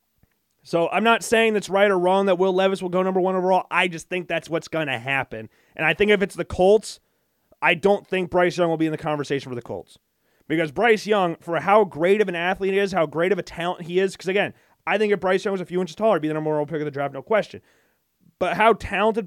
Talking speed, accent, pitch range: 275 wpm, American, 150-190 Hz